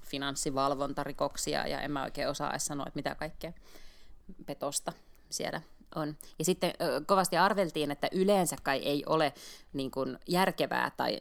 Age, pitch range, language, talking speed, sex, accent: 20-39, 140-175 Hz, Finnish, 120 wpm, female, native